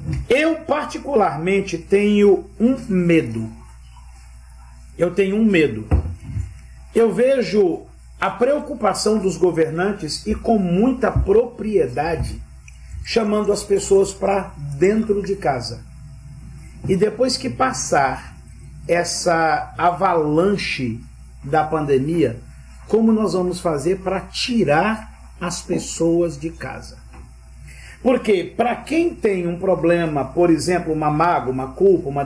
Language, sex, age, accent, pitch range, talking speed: Portuguese, male, 50-69, Brazilian, 150-235 Hz, 105 wpm